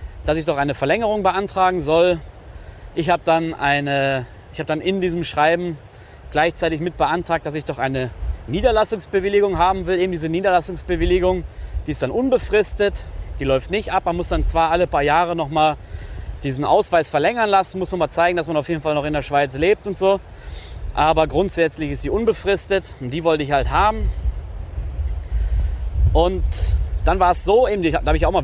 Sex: male